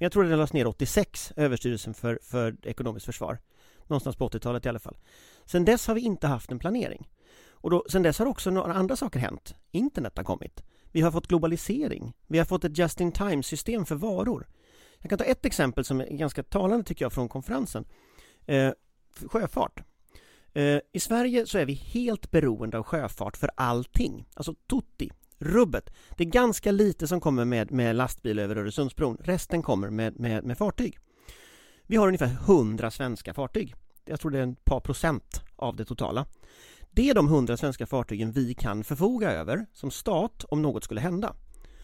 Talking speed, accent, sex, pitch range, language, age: 180 wpm, native, male, 125-185 Hz, Swedish, 40-59